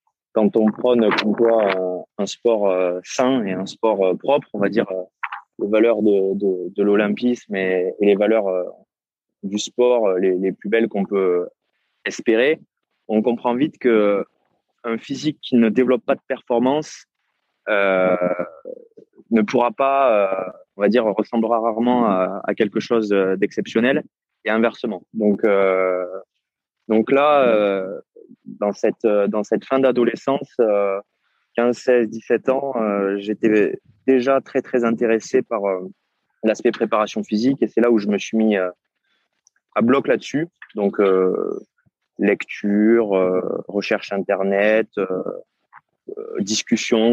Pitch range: 100-120 Hz